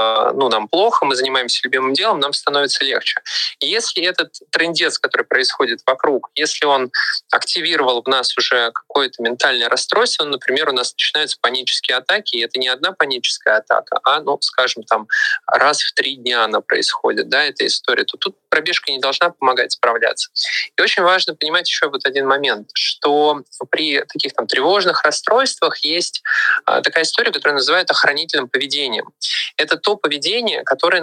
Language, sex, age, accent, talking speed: Russian, male, 20-39, native, 160 wpm